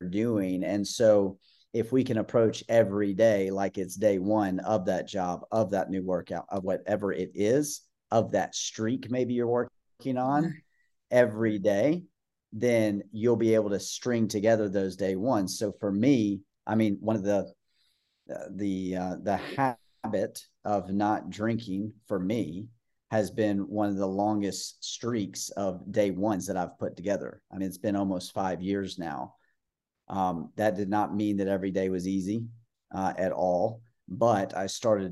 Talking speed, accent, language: 165 wpm, American, English